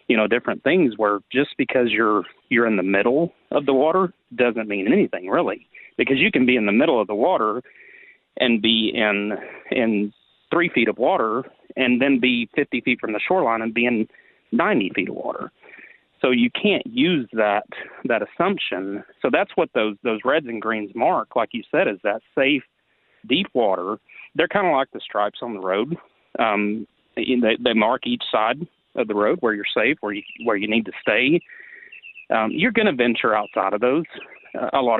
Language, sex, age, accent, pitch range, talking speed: English, male, 40-59, American, 105-130 Hz, 195 wpm